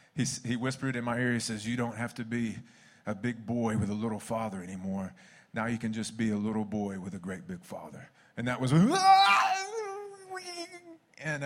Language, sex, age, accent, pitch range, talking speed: English, male, 30-49, American, 130-175 Hz, 195 wpm